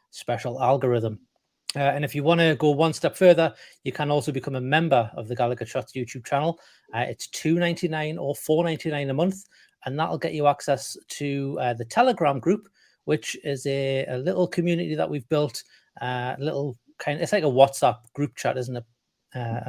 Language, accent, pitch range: English, British, 125-160 Hz